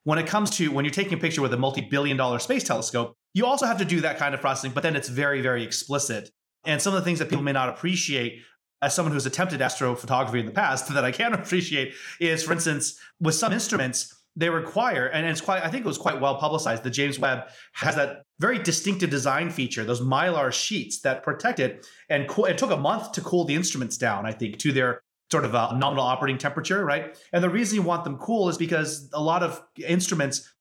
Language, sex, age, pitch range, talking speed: English, male, 30-49, 135-170 Hz, 235 wpm